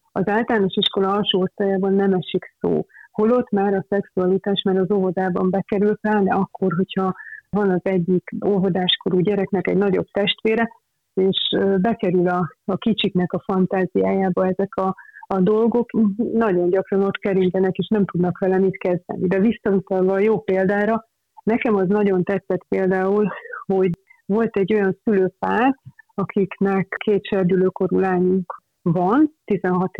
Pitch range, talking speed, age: 190-210 Hz, 135 wpm, 30-49